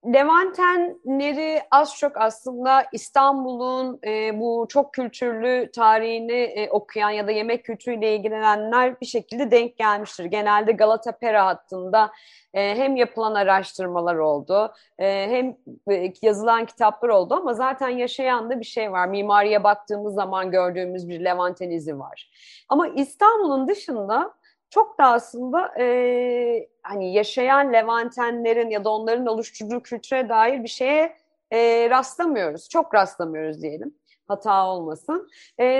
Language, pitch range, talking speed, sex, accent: Turkish, 210-290 Hz, 120 wpm, female, native